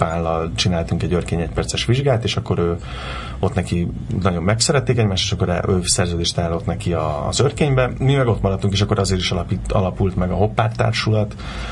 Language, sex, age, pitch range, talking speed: Hungarian, male, 30-49, 90-110 Hz, 185 wpm